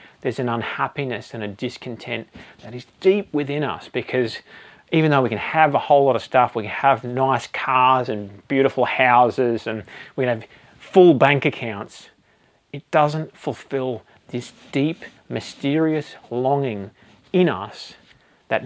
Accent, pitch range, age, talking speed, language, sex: Australian, 120-155 Hz, 30-49, 150 wpm, English, male